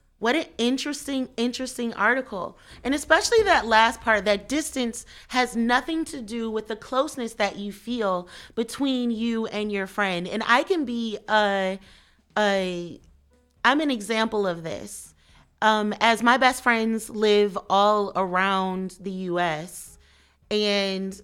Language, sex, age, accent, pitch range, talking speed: English, female, 30-49, American, 195-240 Hz, 140 wpm